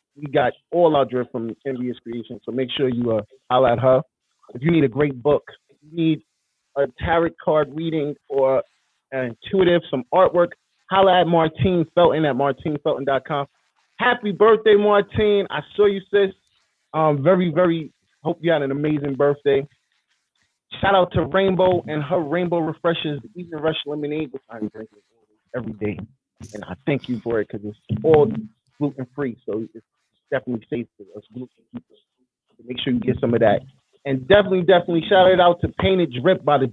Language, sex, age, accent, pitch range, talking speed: English, male, 30-49, American, 130-170 Hz, 175 wpm